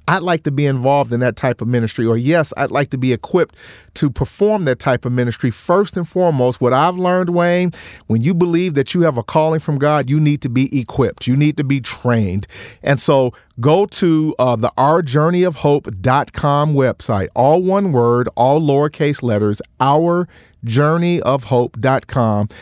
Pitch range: 125-165 Hz